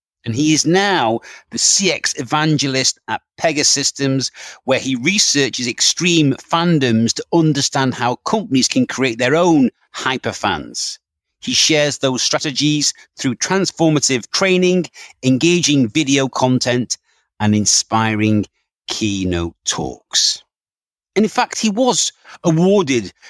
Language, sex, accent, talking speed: English, male, British, 115 wpm